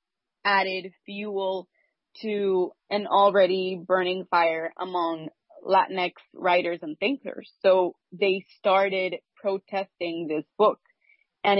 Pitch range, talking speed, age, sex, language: 175-200 Hz, 100 wpm, 20-39, female, English